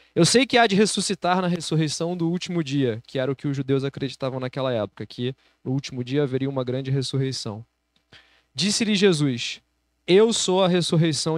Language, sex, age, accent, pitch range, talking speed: Portuguese, male, 20-39, Brazilian, 140-200 Hz, 180 wpm